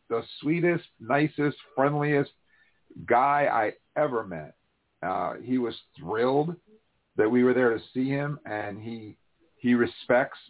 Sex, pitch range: male, 105-145 Hz